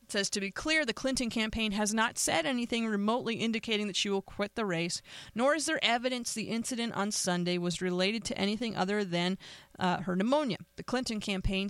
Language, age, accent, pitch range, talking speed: English, 30-49, American, 185-230 Hz, 200 wpm